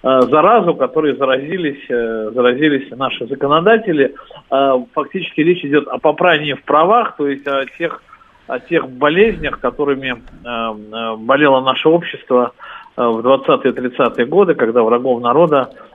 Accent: native